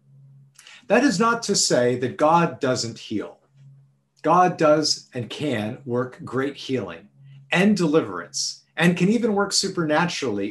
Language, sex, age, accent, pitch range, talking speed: English, male, 50-69, American, 125-165 Hz, 130 wpm